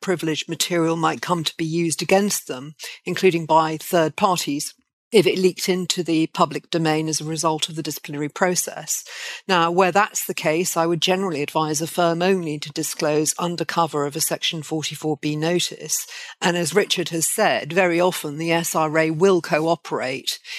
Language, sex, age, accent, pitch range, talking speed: English, female, 50-69, British, 160-185 Hz, 170 wpm